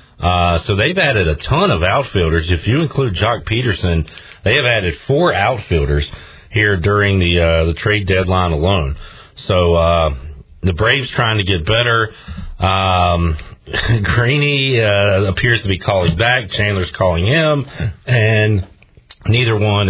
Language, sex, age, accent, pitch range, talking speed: English, male, 40-59, American, 85-110 Hz, 145 wpm